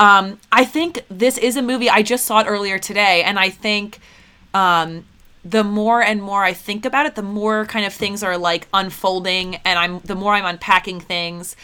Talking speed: 205 wpm